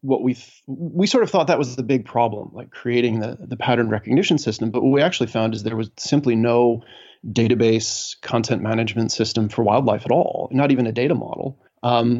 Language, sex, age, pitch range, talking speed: English, male, 30-49, 115-130 Hz, 200 wpm